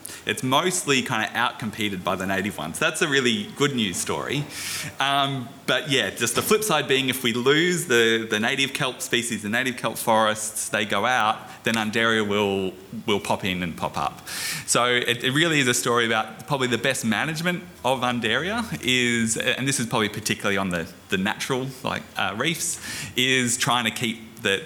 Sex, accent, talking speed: male, Australian, 195 wpm